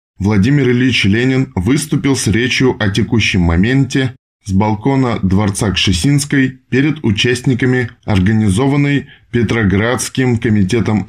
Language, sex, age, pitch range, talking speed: Russian, male, 20-39, 95-125 Hz, 95 wpm